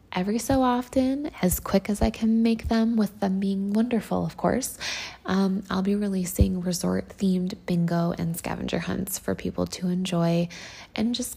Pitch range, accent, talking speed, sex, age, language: 175-215 Hz, American, 165 wpm, female, 20-39, English